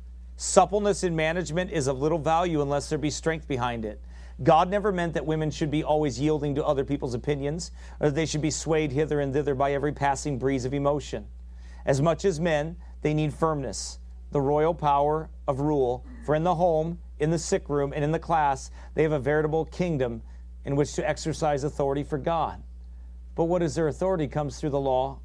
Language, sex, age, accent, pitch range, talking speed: English, male, 40-59, American, 140-210 Hz, 205 wpm